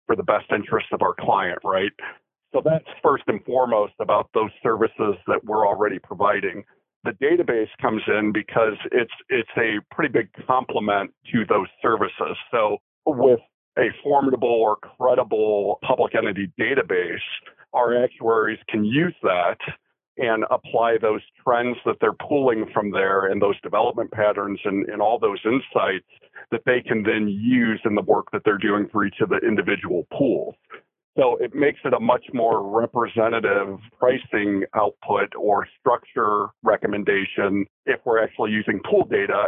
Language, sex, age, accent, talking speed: English, male, 40-59, American, 155 wpm